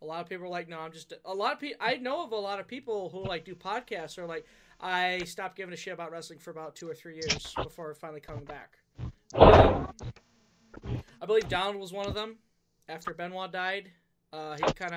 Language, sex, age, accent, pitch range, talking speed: English, male, 20-39, American, 155-205 Hz, 235 wpm